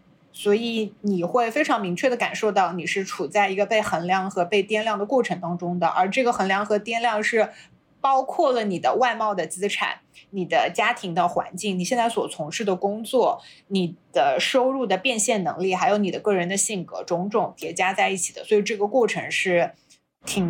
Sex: female